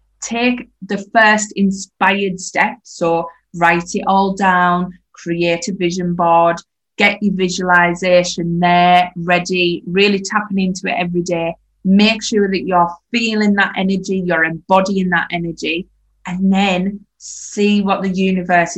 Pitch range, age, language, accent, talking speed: 175-195 Hz, 20-39, English, British, 135 wpm